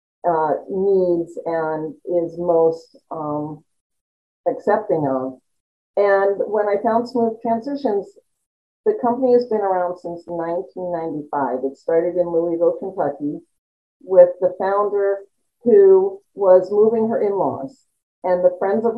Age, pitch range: 50-69, 165-210 Hz